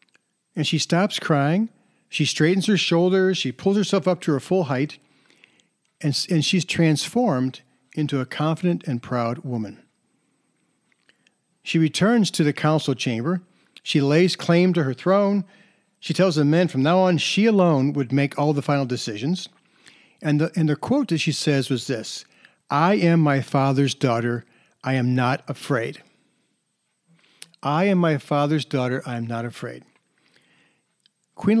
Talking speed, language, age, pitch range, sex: 155 wpm, English, 50-69, 135-175 Hz, male